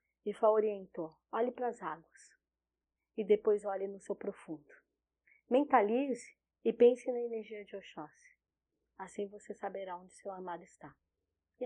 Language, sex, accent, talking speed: Portuguese, female, Brazilian, 145 wpm